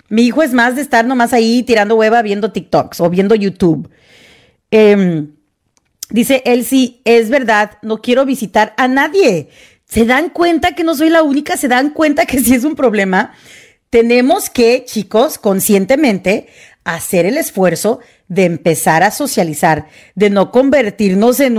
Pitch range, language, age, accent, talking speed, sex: 190-250 Hz, Spanish, 40-59, Mexican, 160 wpm, female